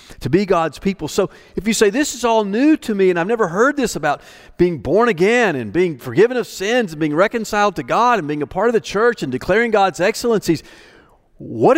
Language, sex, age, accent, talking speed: English, male, 50-69, American, 230 wpm